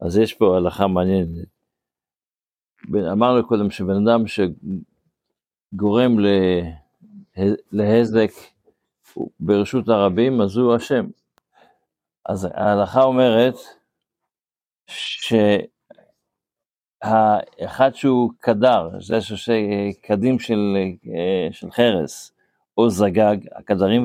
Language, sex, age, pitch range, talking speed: Hebrew, male, 50-69, 105-130 Hz, 75 wpm